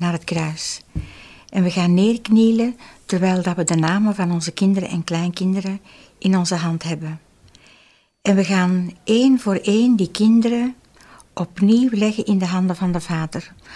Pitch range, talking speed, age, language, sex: 175-215 Hz, 155 wpm, 60-79, Dutch, female